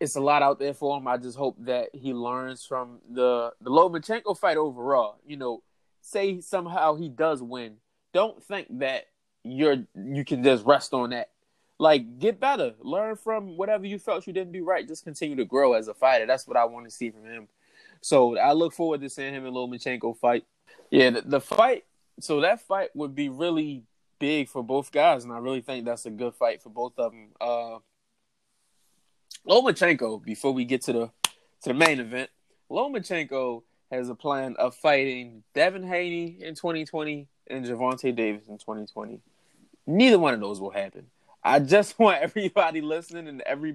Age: 20-39